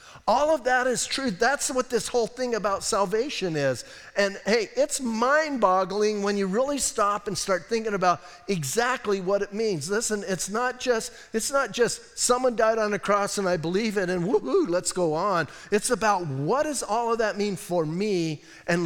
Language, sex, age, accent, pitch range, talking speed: English, male, 50-69, American, 185-235 Hz, 195 wpm